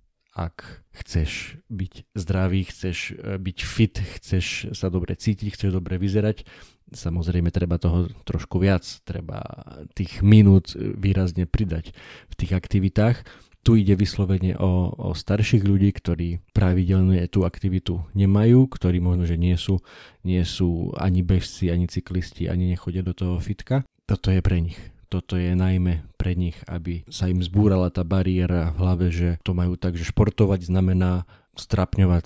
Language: Slovak